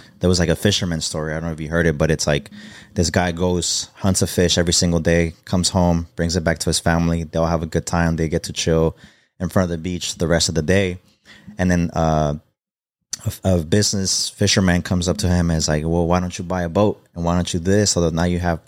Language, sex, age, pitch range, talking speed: English, male, 20-39, 85-95 Hz, 265 wpm